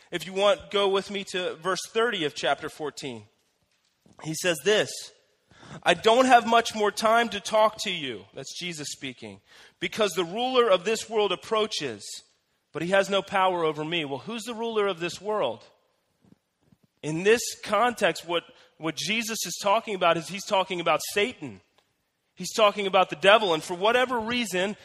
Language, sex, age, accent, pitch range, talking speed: English, male, 30-49, American, 170-220 Hz, 175 wpm